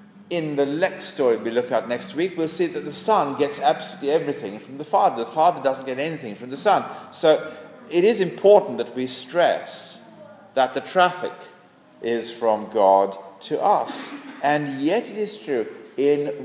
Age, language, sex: 50-69, English, male